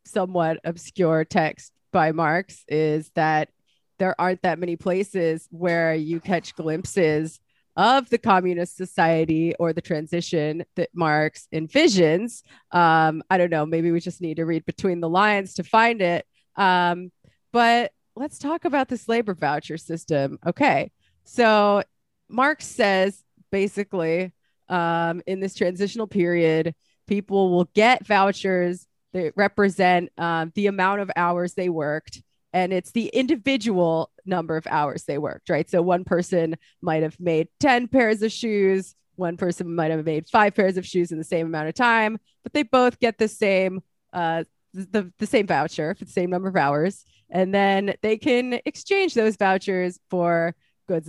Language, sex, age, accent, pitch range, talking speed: English, female, 30-49, American, 165-205 Hz, 155 wpm